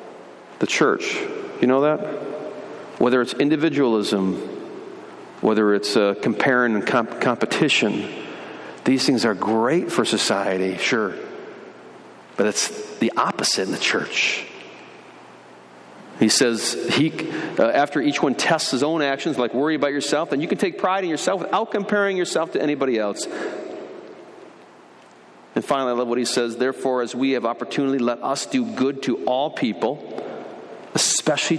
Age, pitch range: 40-59, 105-150 Hz